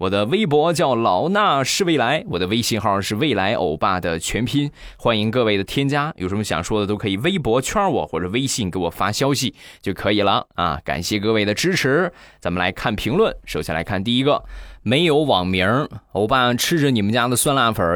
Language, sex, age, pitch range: Chinese, male, 20-39, 95-125 Hz